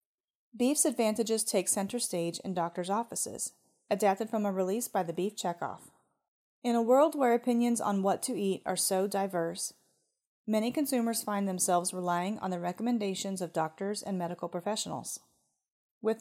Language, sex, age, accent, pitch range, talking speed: English, female, 30-49, American, 180-230 Hz, 155 wpm